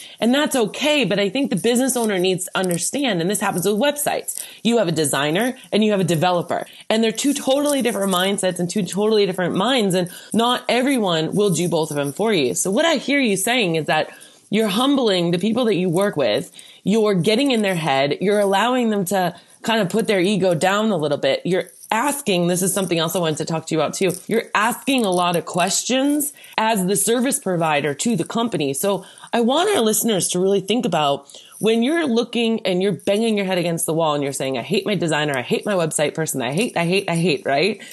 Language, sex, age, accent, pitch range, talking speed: English, female, 20-39, American, 175-230 Hz, 235 wpm